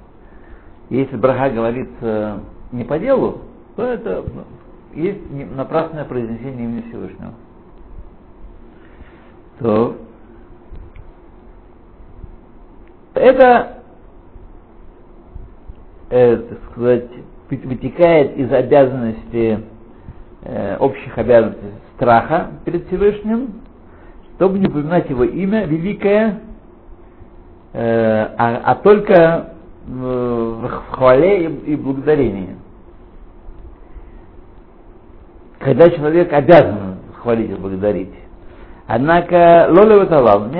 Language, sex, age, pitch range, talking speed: Russian, male, 60-79, 110-160 Hz, 75 wpm